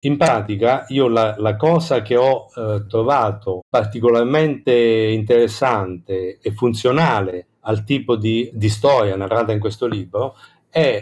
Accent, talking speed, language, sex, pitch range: native, 130 wpm, Italian, male, 105-130 Hz